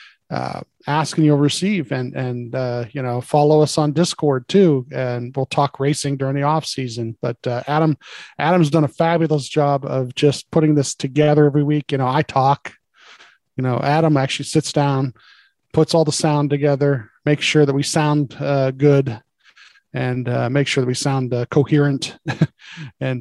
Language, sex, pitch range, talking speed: English, male, 130-155 Hz, 180 wpm